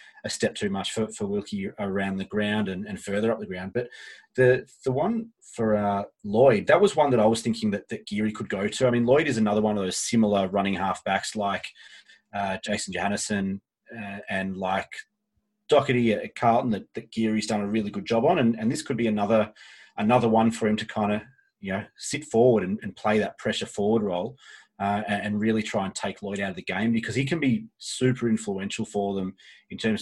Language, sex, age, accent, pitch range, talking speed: English, male, 30-49, Australian, 100-125 Hz, 220 wpm